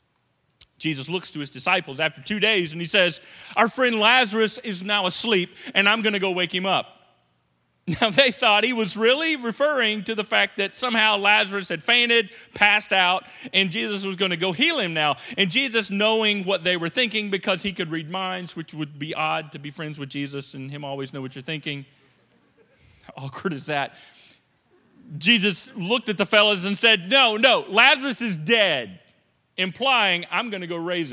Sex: male